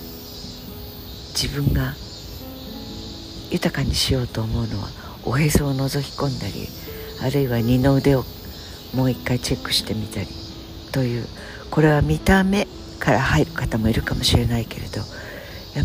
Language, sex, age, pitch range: Japanese, female, 60-79, 85-140 Hz